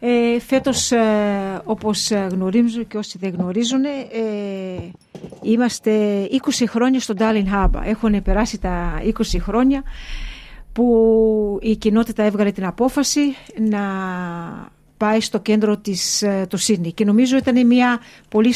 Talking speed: 125 wpm